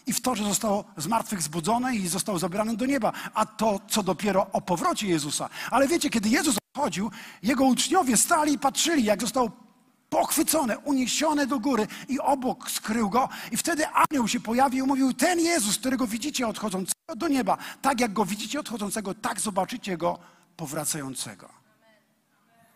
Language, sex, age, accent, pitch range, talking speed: Polish, male, 50-69, native, 210-290 Hz, 160 wpm